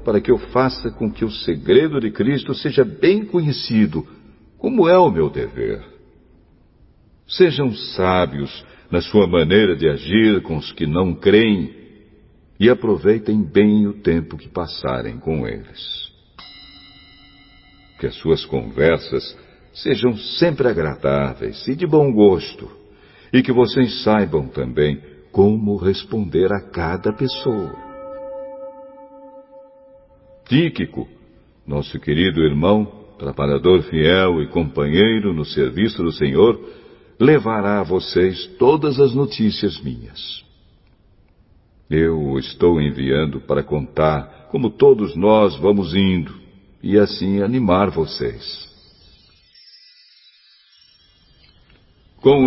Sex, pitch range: male, 85-130 Hz